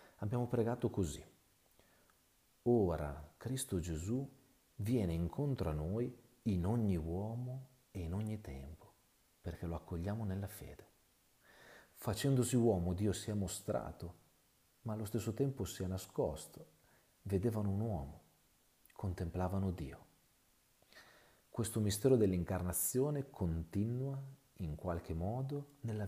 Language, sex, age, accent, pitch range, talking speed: Italian, male, 40-59, native, 90-120 Hz, 110 wpm